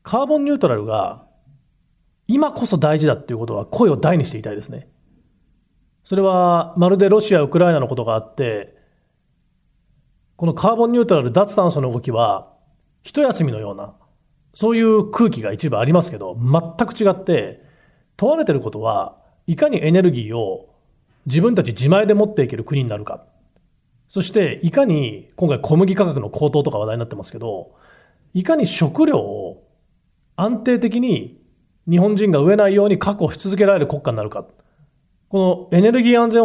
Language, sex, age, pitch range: Japanese, male, 40-59, 140-205 Hz